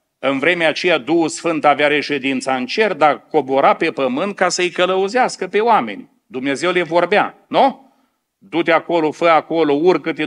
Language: Romanian